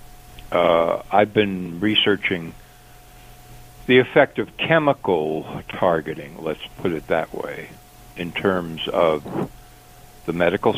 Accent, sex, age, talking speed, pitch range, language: American, male, 60-79, 105 wpm, 85-100 Hz, English